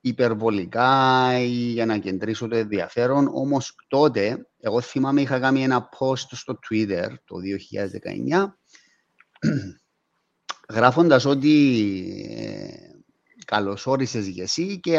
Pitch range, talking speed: 110-150 Hz, 95 wpm